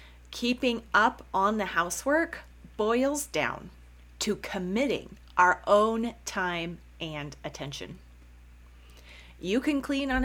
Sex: female